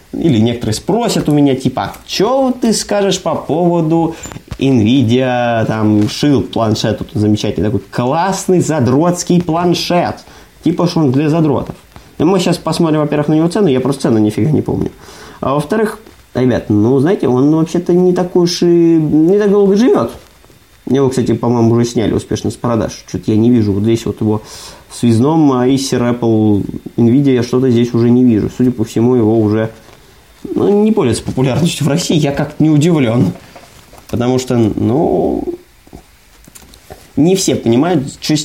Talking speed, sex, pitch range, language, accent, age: 165 wpm, male, 115-165 Hz, Russian, native, 20-39